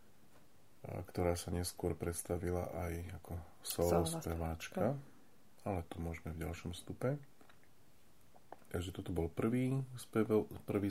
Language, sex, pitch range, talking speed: Slovak, male, 85-100 Hz, 110 wpm